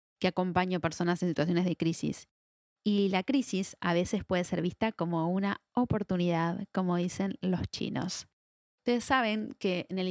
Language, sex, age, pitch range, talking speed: Spanish, female, 20-39, 170-215 Hz, 165 wpm